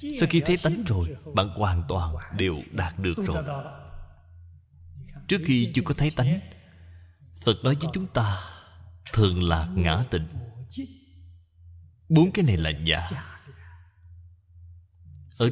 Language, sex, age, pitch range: Vietnamese, male, 20-39, 80-125 Hz